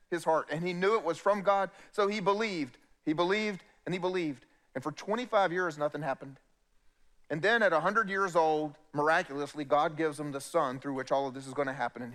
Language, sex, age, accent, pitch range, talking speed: English, male, 40-59, American, 140-200 Hz, 220 wpm